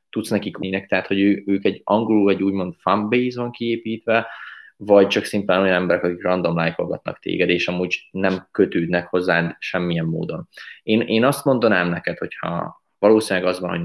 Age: 20-39